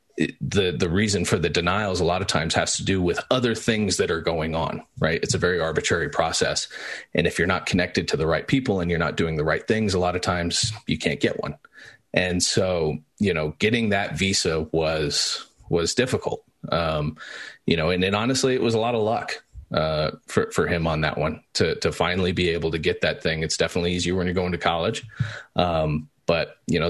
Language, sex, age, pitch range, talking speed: English, male, 30-49, 85-100 Hz, 225 wpm